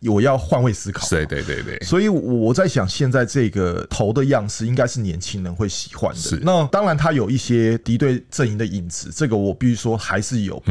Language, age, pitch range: Chinese, 20-39, 100-130 Hz